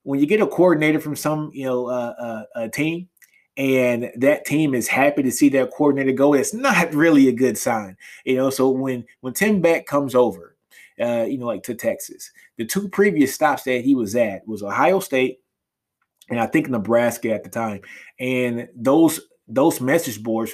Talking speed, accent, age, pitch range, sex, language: 195 wpm, American, 20-39, 125-160 Hz, male, English